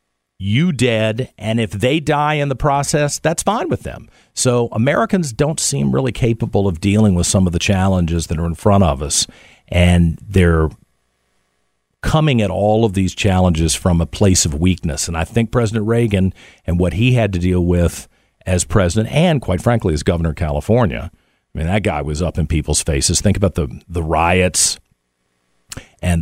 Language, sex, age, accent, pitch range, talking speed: English, male, 50-69, American, 85-110 Hz, 185 wpm